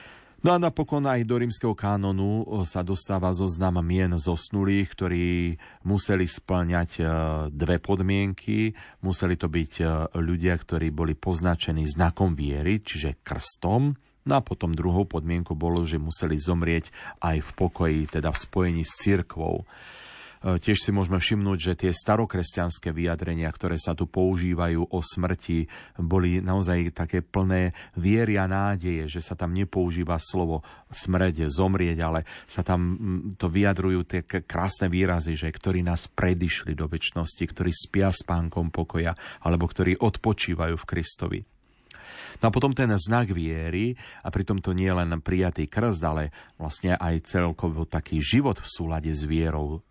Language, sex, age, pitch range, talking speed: Slovak, male, 40-59, 85-100 Hz, 145 wpm